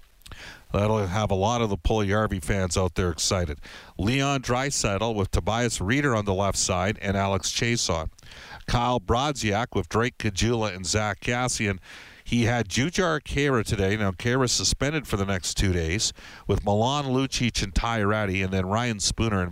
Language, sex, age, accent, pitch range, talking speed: English, male, 50-69, American, 95-115 Hz, 170 wpm